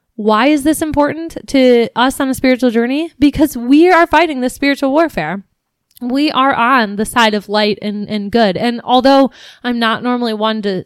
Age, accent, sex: 20-39, American, female